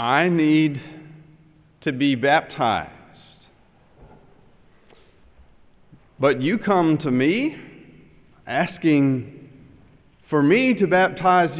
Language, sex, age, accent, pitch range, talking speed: English, male, 40-59, American, 140-195 Hz, 80 wpm